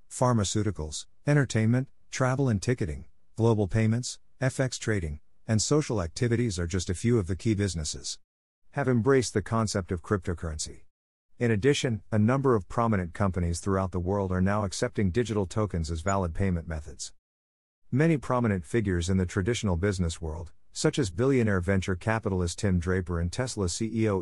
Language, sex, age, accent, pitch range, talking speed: English, male, 50-69, American, 90-115 Hz, 155 wpm